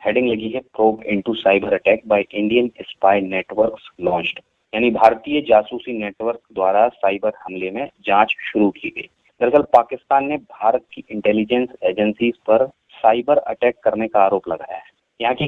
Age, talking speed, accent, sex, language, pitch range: 30-49, 60 wpm, native, male, Hindi, 105-130 Hz